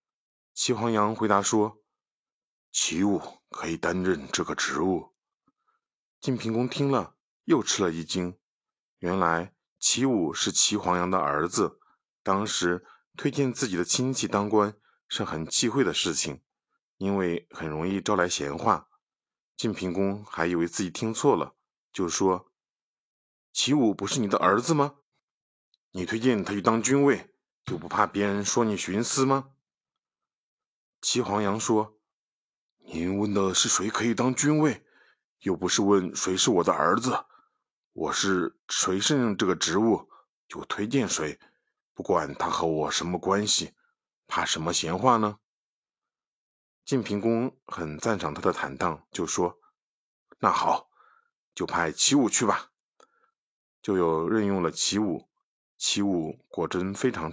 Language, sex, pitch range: Chinese, male, 95-125 Hz